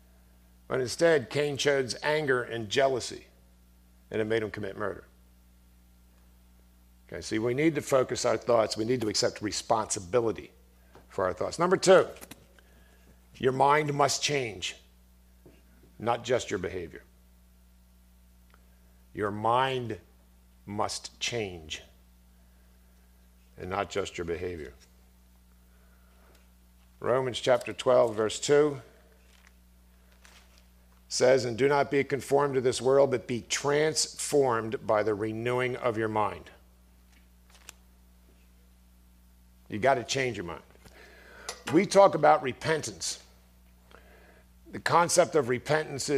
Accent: American